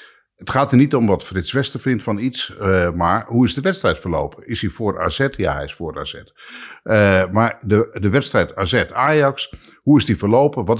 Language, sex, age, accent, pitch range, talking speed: Dutch, male, 60-79, Dutch, 95-130 Hz, 210 wpm